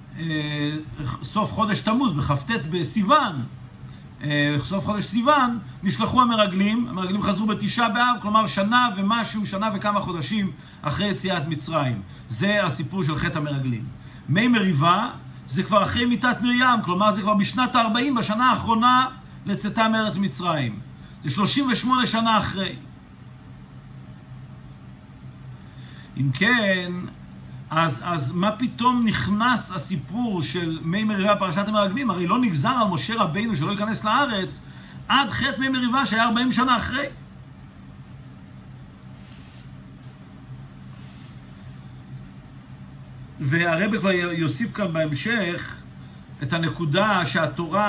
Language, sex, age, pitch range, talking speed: Hebrew, male, 50-69, 145-215 Hz, 110 wpm